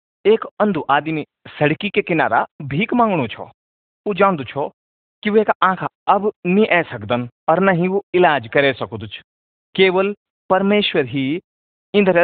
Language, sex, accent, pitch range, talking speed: Hindi, male, native, 130-195 Hz, 125 wpm